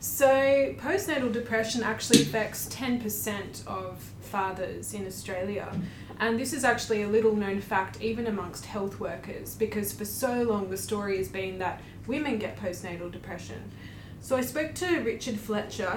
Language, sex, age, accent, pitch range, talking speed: English, female, 20-39, Australian, 200-235 Hz, 155 wpm